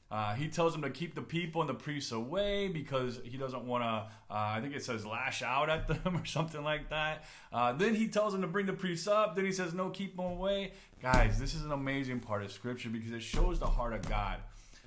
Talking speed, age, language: 240 wpm, 30-49, English